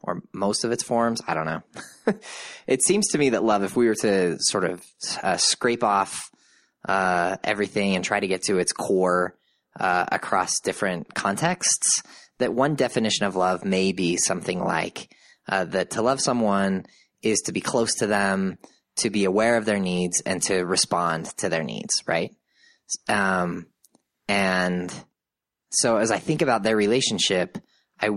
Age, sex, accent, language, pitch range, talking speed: 20-39, male, American, English, 95-120 Hz, 170 wpm